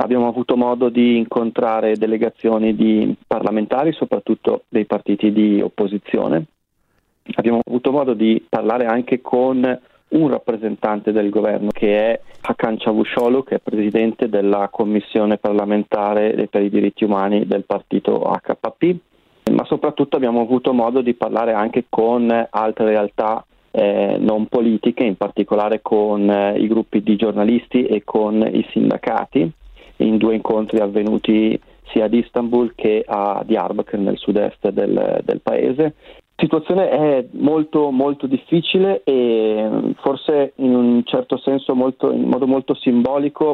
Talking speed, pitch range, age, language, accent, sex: 135 wpm, 110-130 Hz, 40-59, Italian, native, male